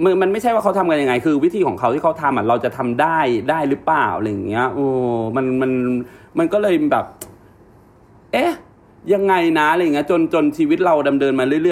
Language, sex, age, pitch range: Thai, male, 30-49, 125-200 Hz